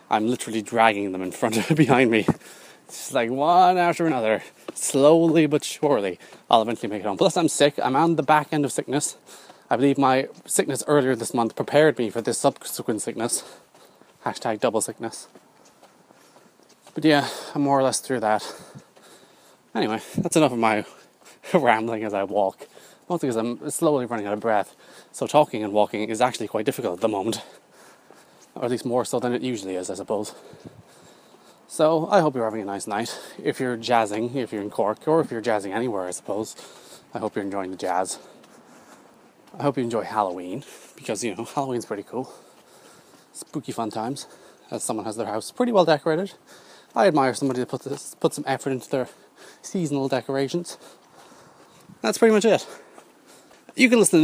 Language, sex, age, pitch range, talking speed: English, male, 20-39, 115-155 Hz, 180 wpm